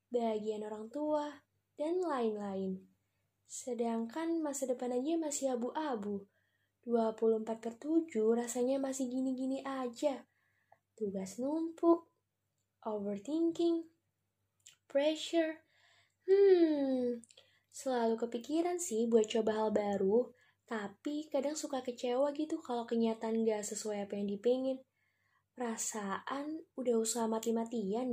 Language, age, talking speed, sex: Indonesian, 10-29, 95 wpm, female